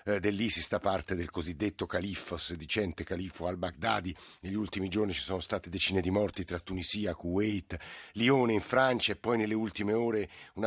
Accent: native